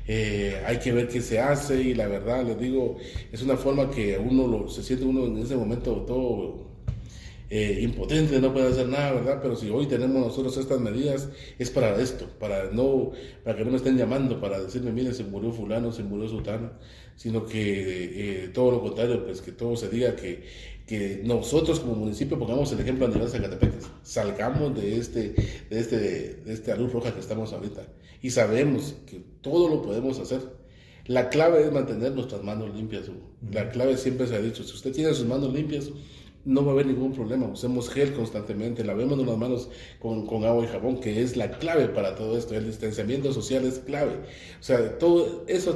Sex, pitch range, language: male, 110-130 Hz, Spanish